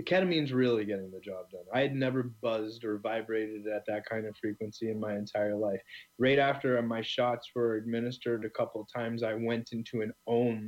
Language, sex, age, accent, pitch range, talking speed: English, male, 20-39, American, 105-120 Hz, 200 wpm